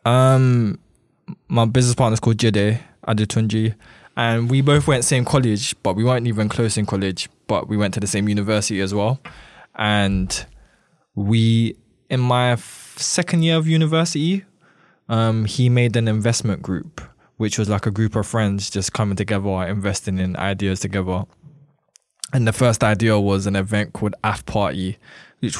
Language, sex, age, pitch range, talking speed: English, male, 20-39, 95-115 Hz, 160 wpm